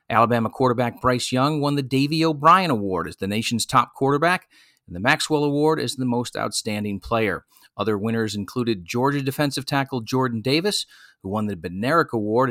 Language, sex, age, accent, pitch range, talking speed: English, male, 40-59, American, 110-150 Hz, 175 wpm